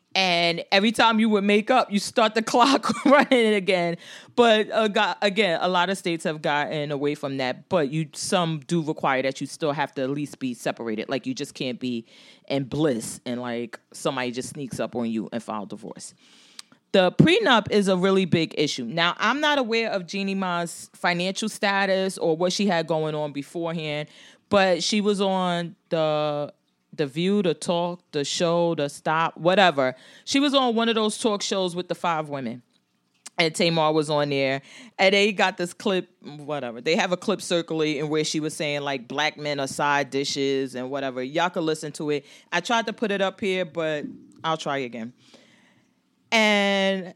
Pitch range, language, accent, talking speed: 145-195 Hz, English, American, 195 wpm